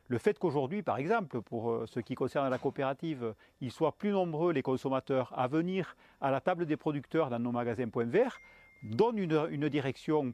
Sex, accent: male, French